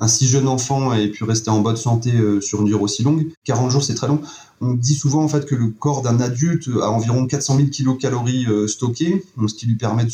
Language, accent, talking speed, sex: French, French, 255 wpm, male